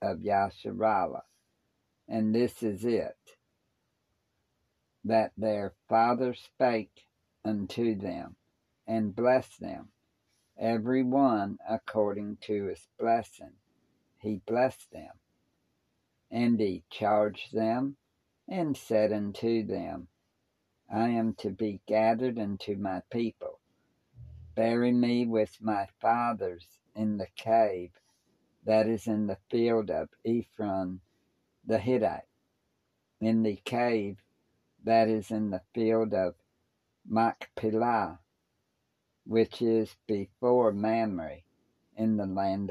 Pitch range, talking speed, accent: 100-115 Hz, 105 wpm, American